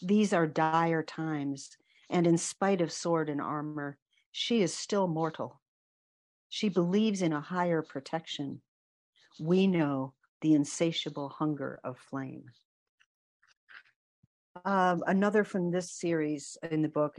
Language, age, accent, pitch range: English, 50-69, American, 145-170 Hz